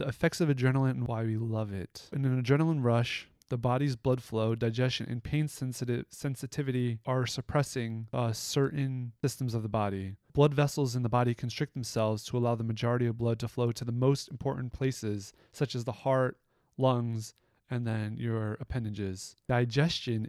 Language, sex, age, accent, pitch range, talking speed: English, male, 30-49, American, 115-135 Hz, 175 wpm